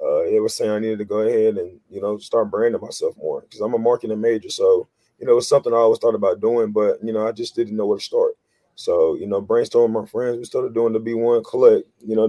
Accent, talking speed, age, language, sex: American, 275 wpm, 30-49, English, male